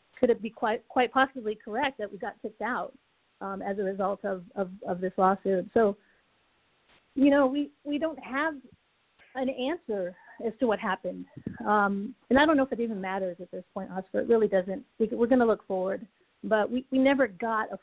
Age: 40-59